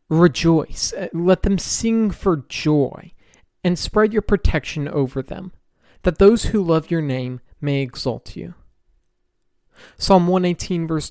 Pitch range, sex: 145-200 Hz, male